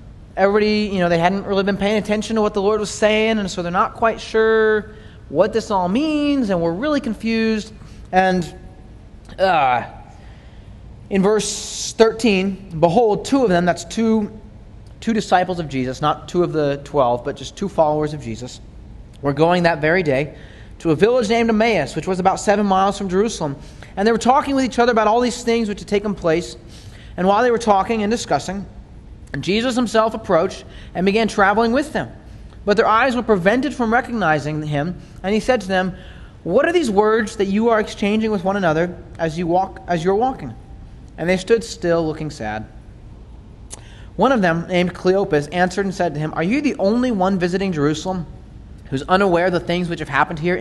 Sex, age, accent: male, 30-49, American